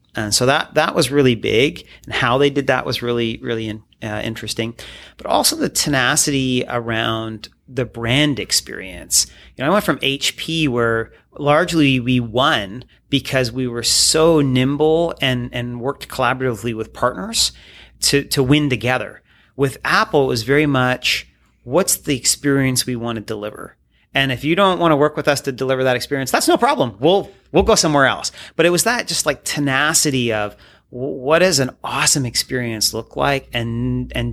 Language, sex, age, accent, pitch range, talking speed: English, male, 30-49, American, 115-145 Hz, 175 wpm